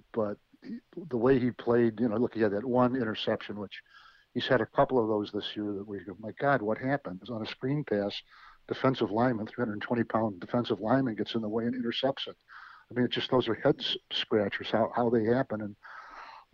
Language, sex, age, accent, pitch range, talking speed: English, male, 50-69, American, 110-125 Hz, 230 wpm